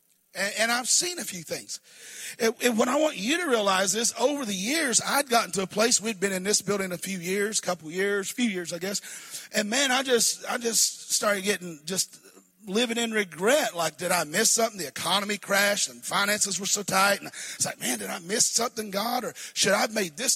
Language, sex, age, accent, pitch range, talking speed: English, male, 40-59, American, 185-230 Hz, 220 wpm